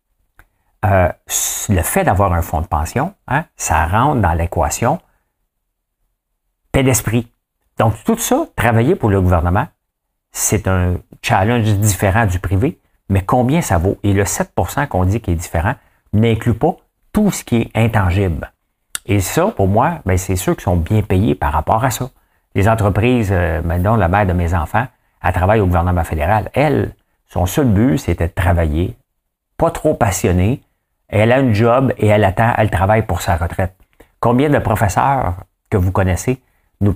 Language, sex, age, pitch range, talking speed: English, male, 50-69, 90-120 Hz, 170 wpm